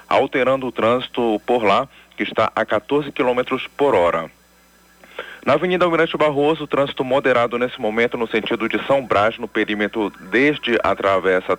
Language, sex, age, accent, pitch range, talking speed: Portuguese, male, 40-59, Brazilian, 110-150 Hz, 155 wpm